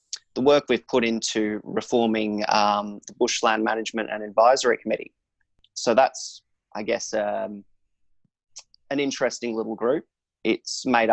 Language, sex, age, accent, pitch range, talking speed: English, male, 20-39, Australian, 105-115 Hz, 130 wpm